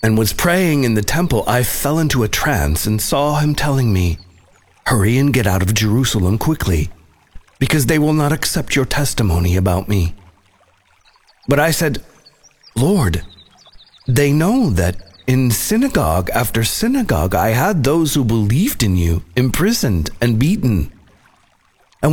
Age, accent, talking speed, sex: 40-59, American, 145 wpm, male